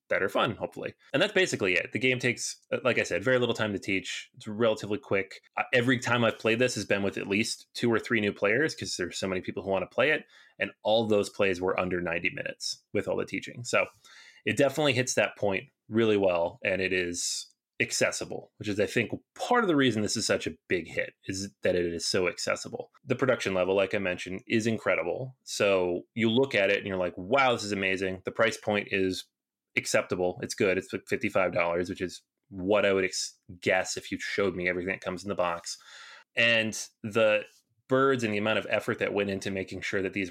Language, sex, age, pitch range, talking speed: English, male, 30-49, 95-115 Hz, 225 wpm